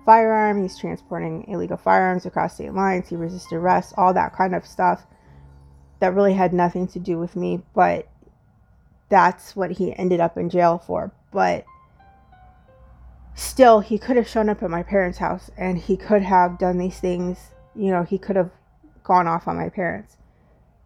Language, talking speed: English, 175 wpm